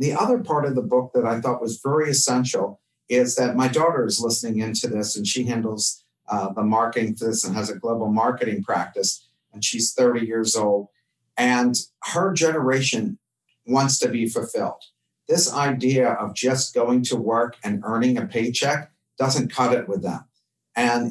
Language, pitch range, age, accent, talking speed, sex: English, 115-140 Hz, 50-69, American, 180 wpm, male